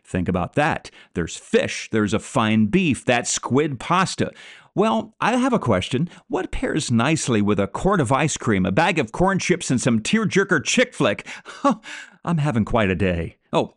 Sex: male